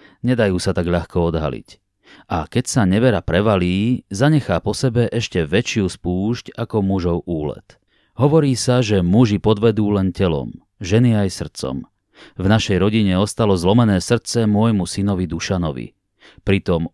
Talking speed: 140 wpm